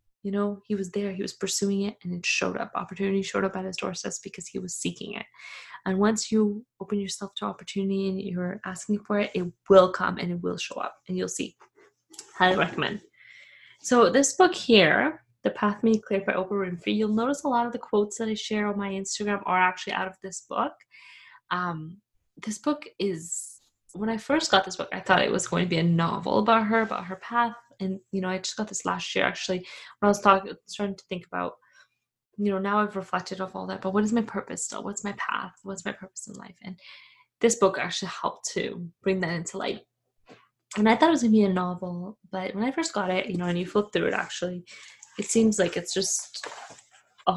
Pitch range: 185-215 Hz